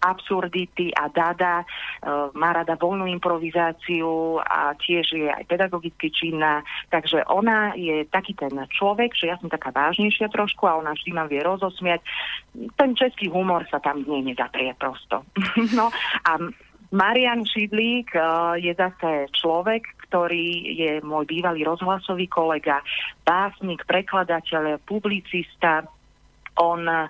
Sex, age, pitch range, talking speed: female, 40-59, 155-185 Hz, 130 wpm